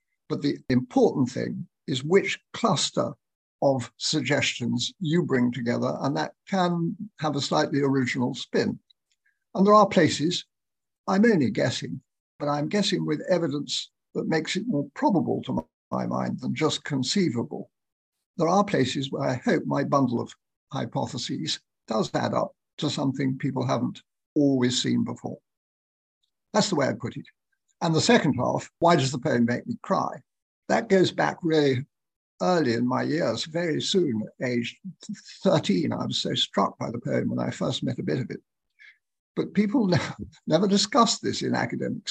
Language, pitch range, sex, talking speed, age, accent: English, 130-175 Hz, male, 160 wpm, 60-79, British